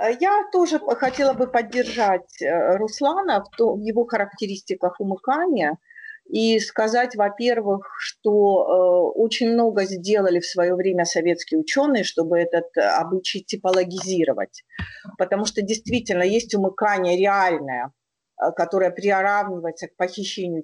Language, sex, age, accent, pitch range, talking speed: Russian, female, 50-69, native, 175-230 Hz, 110 wpm